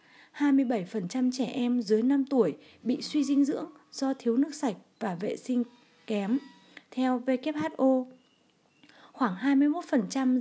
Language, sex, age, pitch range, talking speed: Vietnamese, female, 20-39, 215-270 Hz, 125 wpm